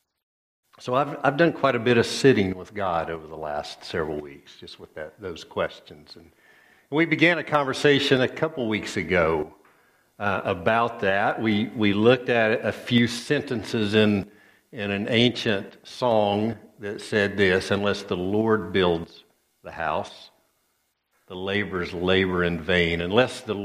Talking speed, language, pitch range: 155 wpm, English, 90-115 Hz